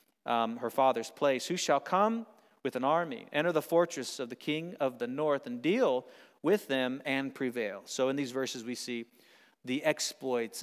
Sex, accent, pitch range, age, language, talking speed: male, American, 130-165 Hz, 40-59, English, 185 wpm